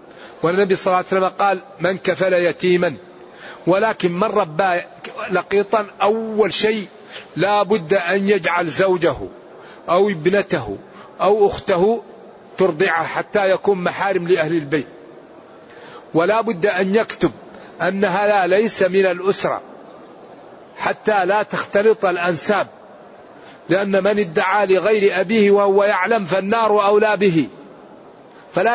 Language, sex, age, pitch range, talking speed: Arabic, male, 50-69, 185-220 Hz, 115 wpm